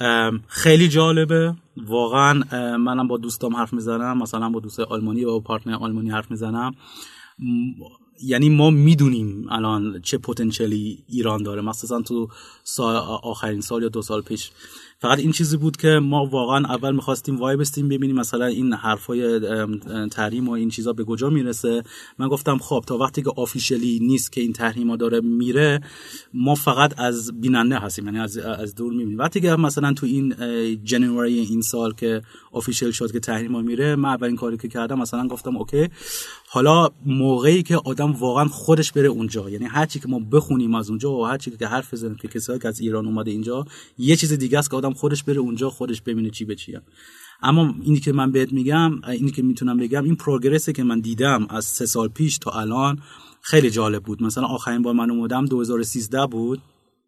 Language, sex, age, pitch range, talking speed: Persian, male, 30-49, 115-140 Hz, 180 wpm